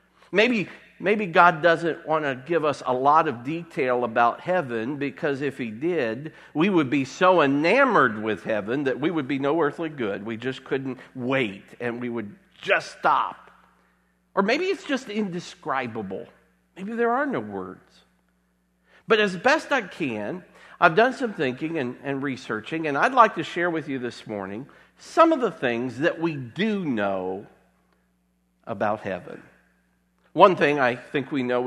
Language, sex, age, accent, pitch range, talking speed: English, male, 50-69, American, 105-160 Hz, 165 wpm